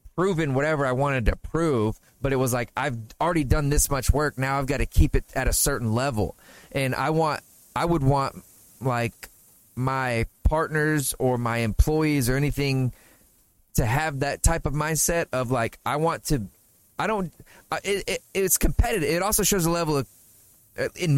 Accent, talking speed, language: American, 175 wpm, English